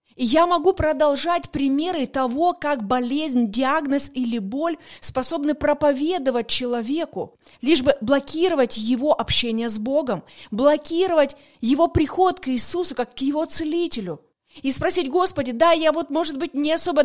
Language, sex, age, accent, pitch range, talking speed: Russian, female, 30-49, native, 250-310 Hz, 140 wpm